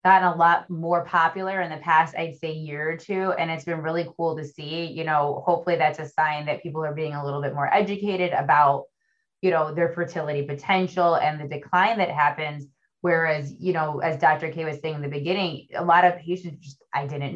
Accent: American